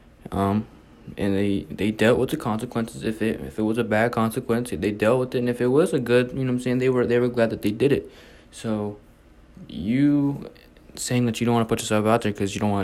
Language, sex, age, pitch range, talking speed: English, male, 20-39, 100-115 Hz, 260 wpm